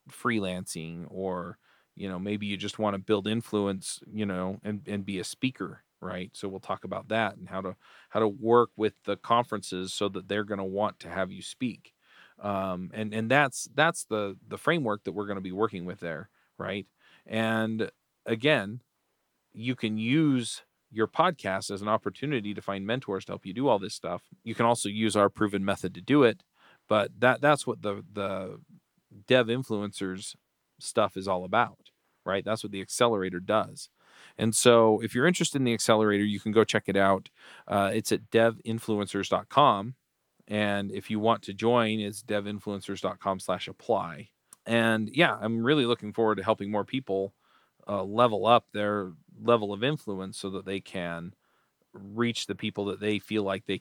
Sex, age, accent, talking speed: male, 40-59, American, 185 wpm